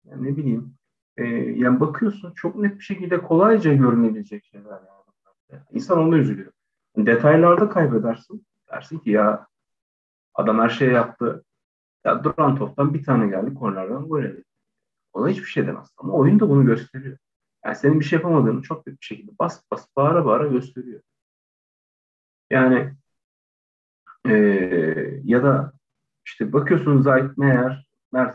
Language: Turkish